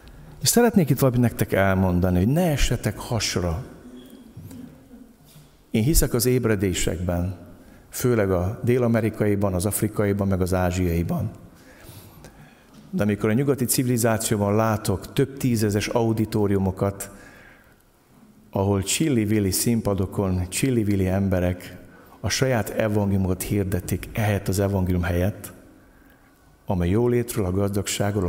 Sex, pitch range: male, 90-110 Hz